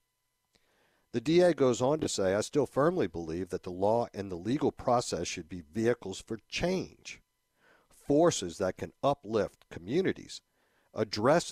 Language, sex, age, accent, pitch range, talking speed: English, male, 60-79, American, 105-135 Hz, 145 wpm